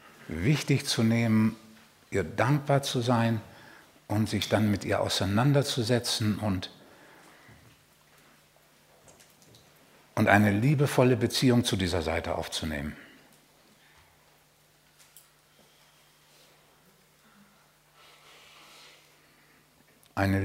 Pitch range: 95-135 Hz